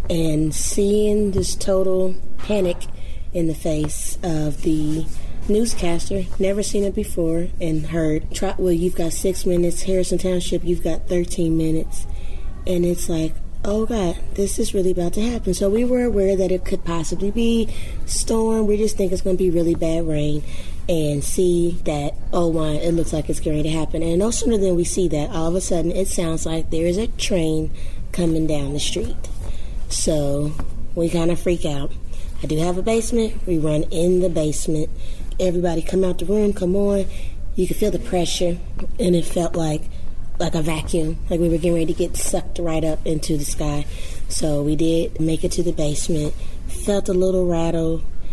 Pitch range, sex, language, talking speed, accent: 160-190 Hz, female, English, 190 wpm, American